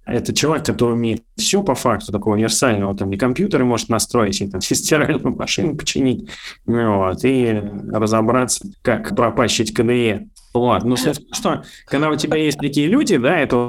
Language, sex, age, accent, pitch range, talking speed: Russian, male, 20-39, native, 105-130 Hz, 160 wpm